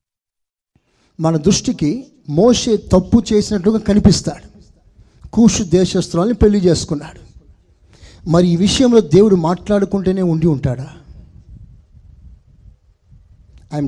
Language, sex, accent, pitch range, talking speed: Telugu, male, native, 155-225 Hz, 80 wpm